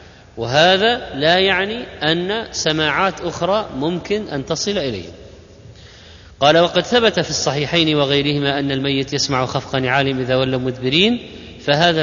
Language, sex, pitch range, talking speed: Arabic, male, 140-185 Hz, 125 wpm